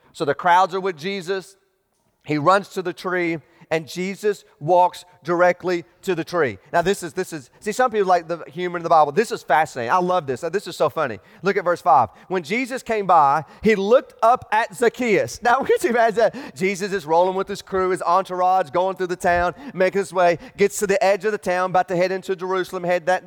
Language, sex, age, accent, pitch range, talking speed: English, male, 30-49, American, 180-240 Hz, 230 wpm